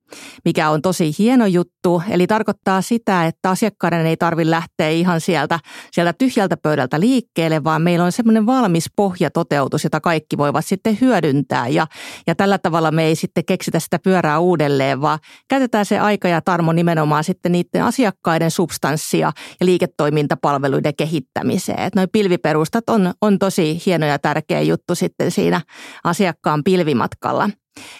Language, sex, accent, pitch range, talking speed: Finnish, female, native, 160-200 Hz, 150 wpm